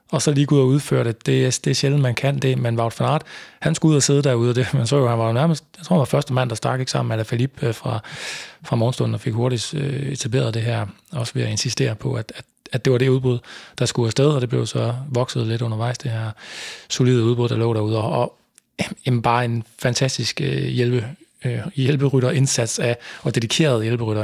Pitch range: 115-135 Hz